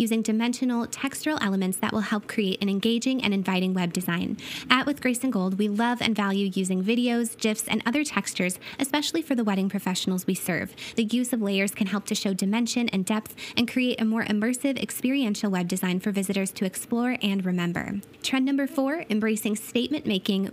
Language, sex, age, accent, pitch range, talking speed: English, female, 20-39, American, 195-240 Hz, 195 wpm